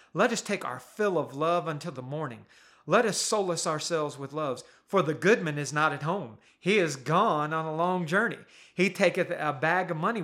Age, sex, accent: 40-59, male, American